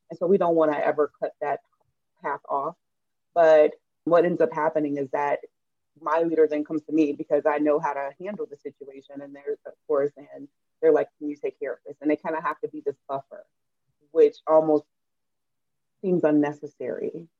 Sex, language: female, English